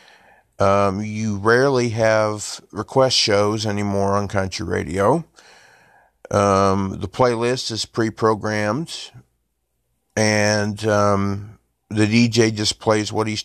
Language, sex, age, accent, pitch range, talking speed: English, male, 50-69, American, 105-120 Hz, 105 wpm